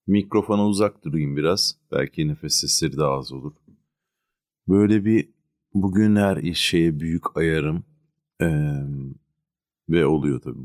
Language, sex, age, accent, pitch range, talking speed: Turkish, male, 40-59, native, 75-100 Hz, 120 wpm